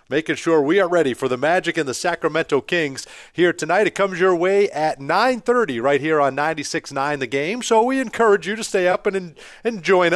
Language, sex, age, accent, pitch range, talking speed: English, male, 40-59, American, 135-185 Hz, 215 wpm